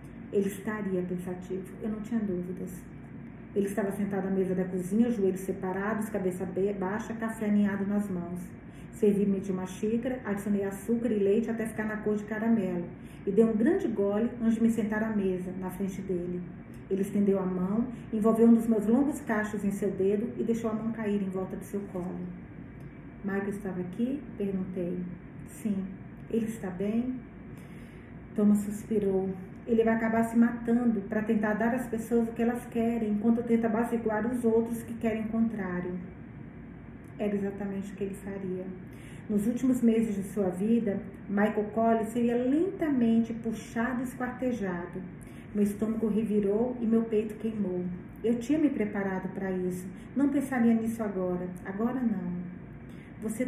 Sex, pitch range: female, 190-230 Hz